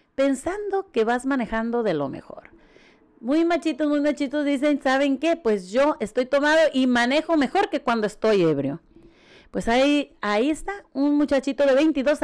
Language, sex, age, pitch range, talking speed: Spanish, female, 40-59, 235-295 Hz, 160 wpm